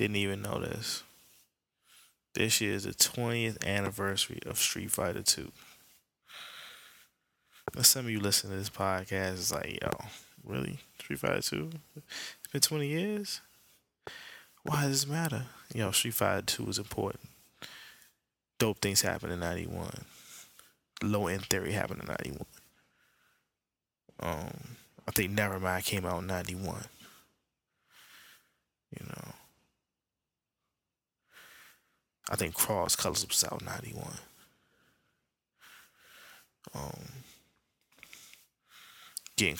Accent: American